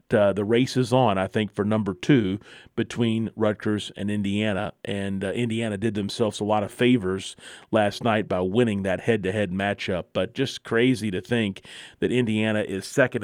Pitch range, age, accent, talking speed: 105-125 Hz, 40-59, American, 175 wpm